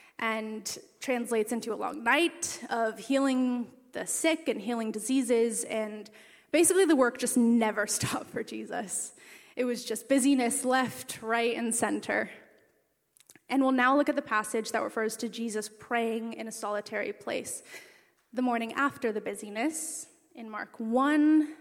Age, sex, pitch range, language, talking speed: 20-39, female, 225-285 Hz, English, 150 wpm